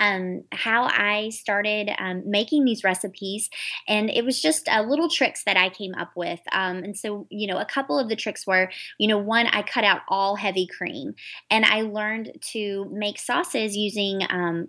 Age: 20-39